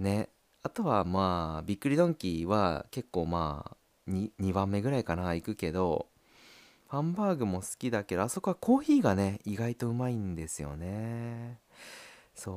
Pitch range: 85-115 Hz